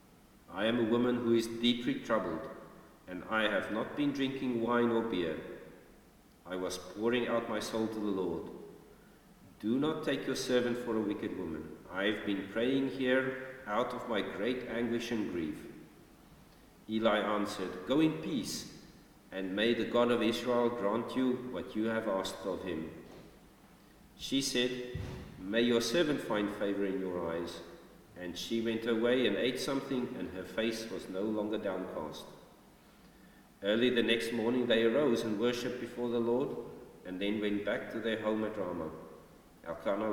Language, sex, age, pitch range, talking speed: English, male, 50-69, 100-120 Hz, 165 wpm